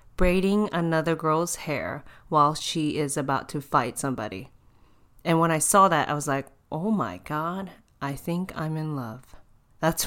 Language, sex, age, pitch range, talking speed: English, female, 30-49, 150-185 Hz, 165 wpm